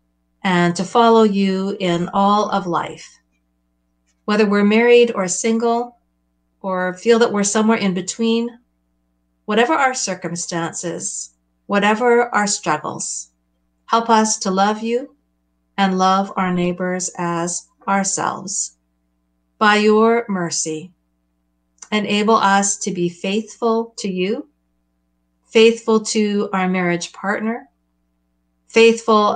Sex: female